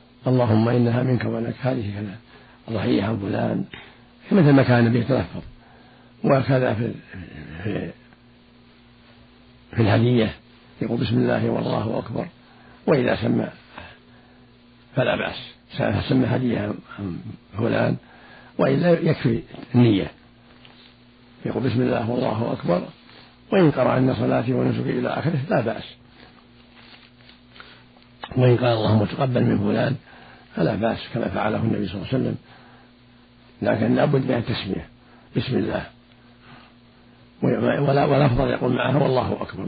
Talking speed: 110 wpm